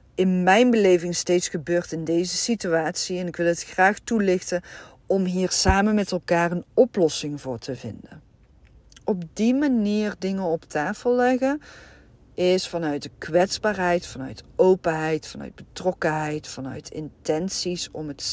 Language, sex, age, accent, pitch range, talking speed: Dutch, female, 40-59, Dutch, 165-205 Hz, 140 wpm